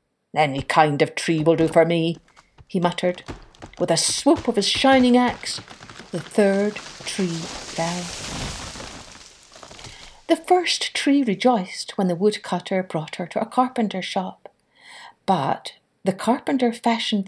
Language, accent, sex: English, Irish, female